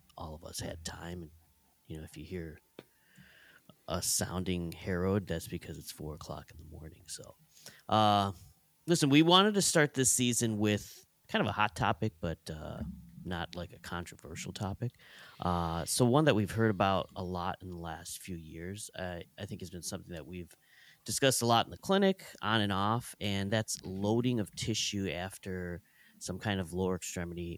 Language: English